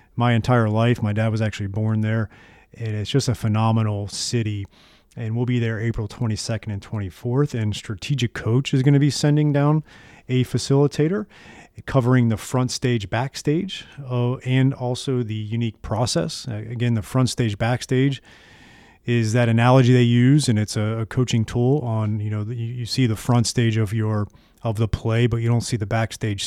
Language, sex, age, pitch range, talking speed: English, male, 30-49, 110-125 Hz, 185 wpm